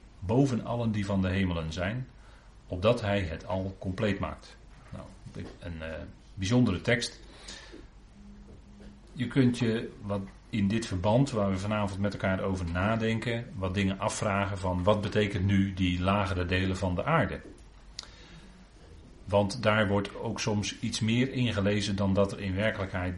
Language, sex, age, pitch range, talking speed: Dutch, male, 40-59, 95-115 Hz, 150 wpm